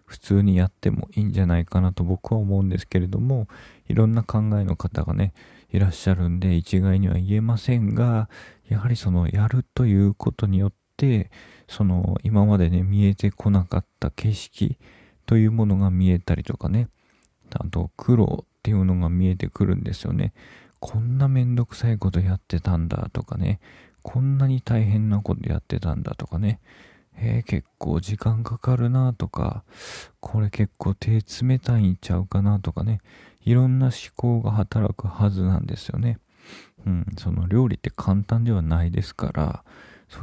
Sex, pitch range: male, 95-110 Hz